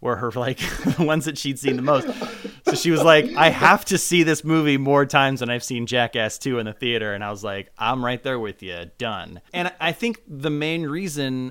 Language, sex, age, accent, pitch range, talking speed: English, male, 30-49, American, 110-145 Hz, 240 wpm